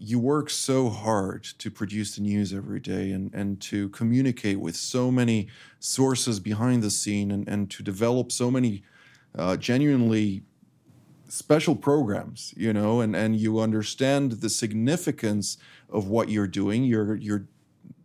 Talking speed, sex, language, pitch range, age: 150 wpm, male, English, 105-130 Hz, 40-59